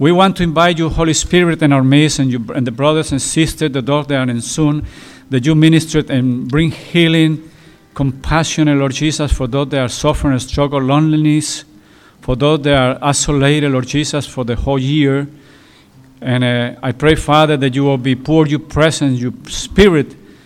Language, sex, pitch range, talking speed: English, male, 130-155 Hz, 190 wpm